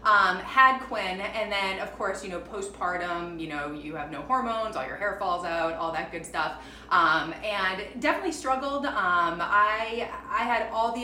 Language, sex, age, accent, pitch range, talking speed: English, female, 20-39, American, 170-225 Hz, 190 wpm